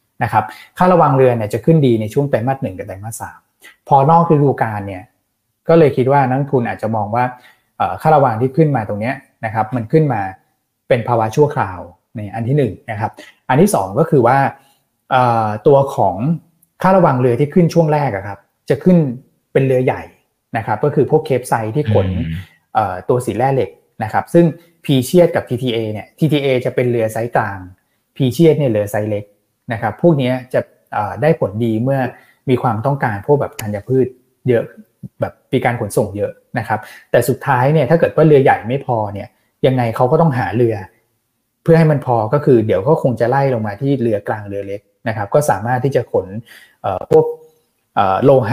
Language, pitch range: Thai, 110-145 Hz